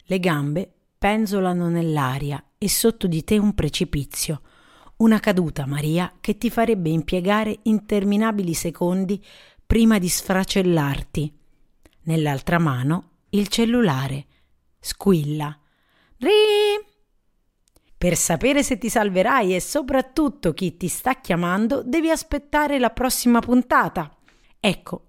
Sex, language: female, Italian